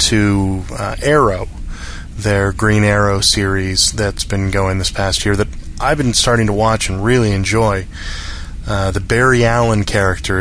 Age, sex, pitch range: 20-39, male, 90-110 Hz